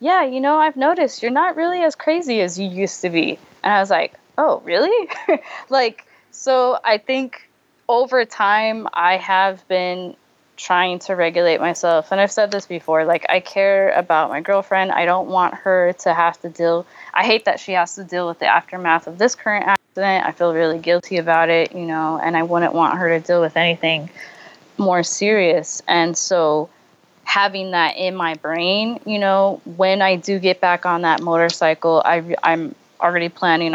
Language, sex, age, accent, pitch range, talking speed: English, female, 20-39, American, 165-210 Hz, 190 wpm